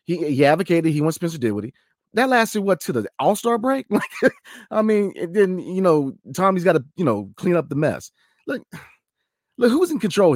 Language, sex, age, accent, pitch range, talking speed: English, male, 30-49, American, 125-180 Hz, 205 wpm